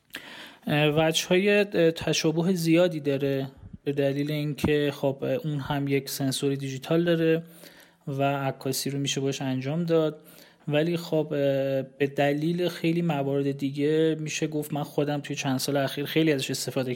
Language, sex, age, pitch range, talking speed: Persian, male, 30-49, 130-155 Hz, 140 wpm